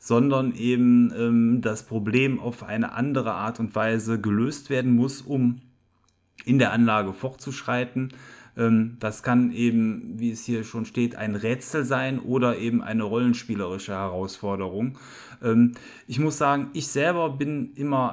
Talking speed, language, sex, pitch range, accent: 145 wpm, German, male, 115-130 Hz, German